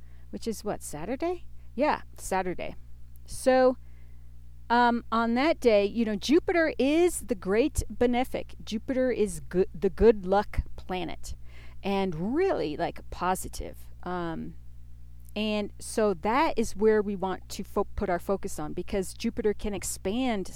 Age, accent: 40-59, American